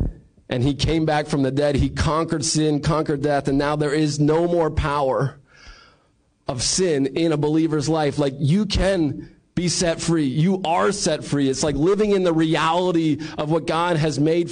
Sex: male